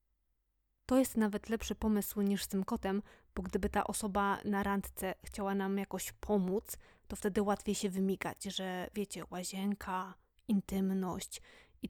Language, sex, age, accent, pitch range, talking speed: Polish, female, 20-39, native, 195-225 Hz, 145 wpm